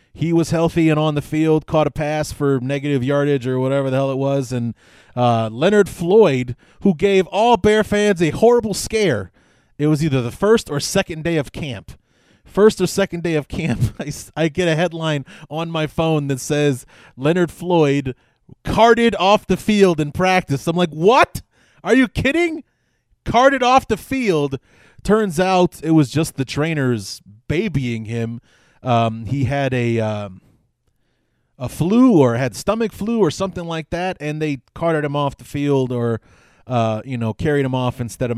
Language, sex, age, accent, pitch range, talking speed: English, male, 30-49, American, 120-165 Hz, 180 wpm